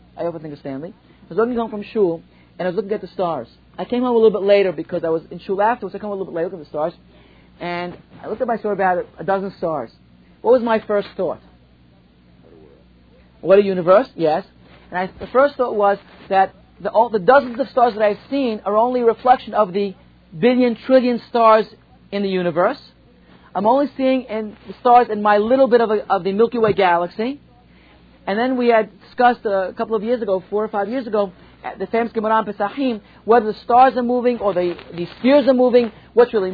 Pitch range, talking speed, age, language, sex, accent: 195-245 Hz, 230 wpm, 40-59, English, male, American